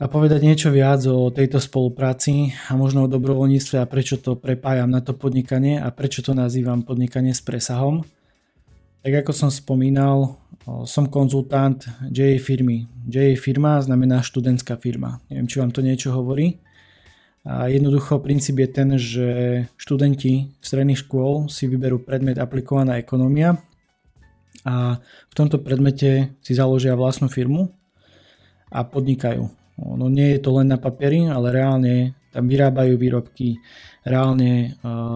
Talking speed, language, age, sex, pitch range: 140 wpm, Slovak, 20-39, male, 125-135 Hz